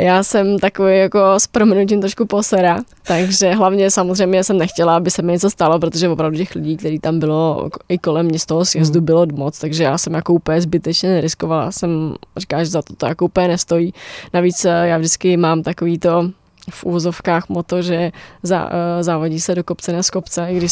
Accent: native